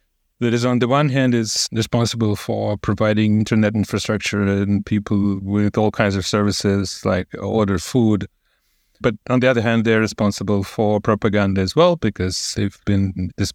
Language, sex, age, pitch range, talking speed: English, male, 30-49, 100-120 Hz, 165 wpm